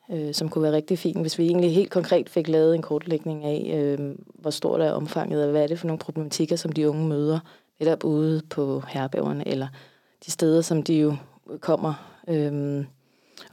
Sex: female